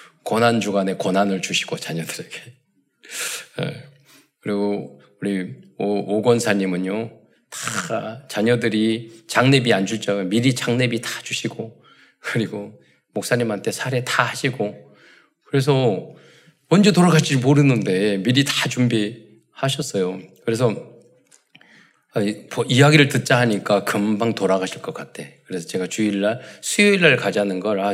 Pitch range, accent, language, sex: 100-135 Hz, native, Korean, male